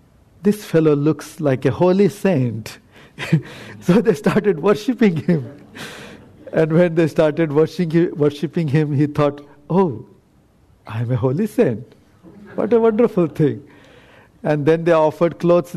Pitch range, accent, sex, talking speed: 125-165 Hz, Indian, male, 130 wpm